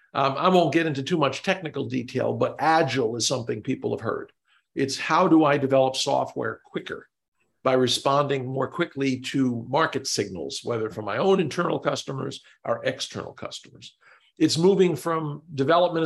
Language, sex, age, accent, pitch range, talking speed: English, male, 50-69, American, 130-165 Hz, 160 wpm